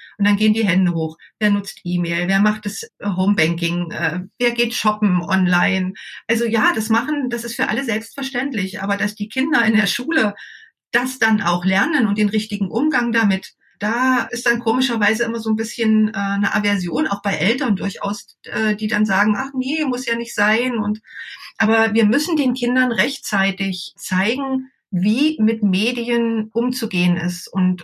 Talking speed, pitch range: 170 wpm, 200-245 Hz